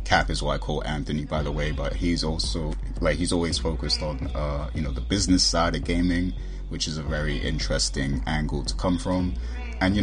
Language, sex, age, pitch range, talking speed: English, male, 20-39, 70-85 Hz, 215 wpm